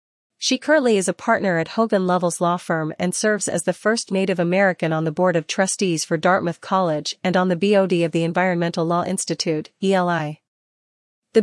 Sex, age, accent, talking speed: female, 40-59, American, 190 wpm